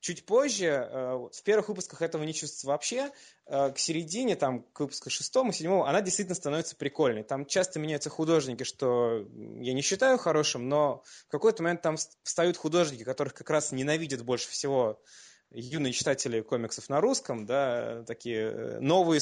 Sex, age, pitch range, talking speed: male, 20-39, 130-160 Hz, 155 wpm